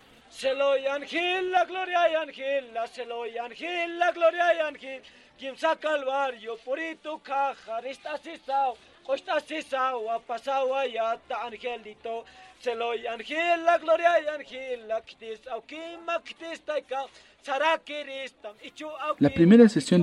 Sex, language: male, Spanish